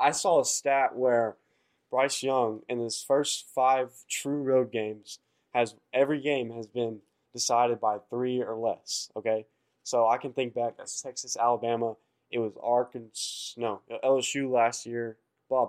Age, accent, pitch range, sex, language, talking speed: 20-39, American, 115-140 Hz, male, English, 155 wpm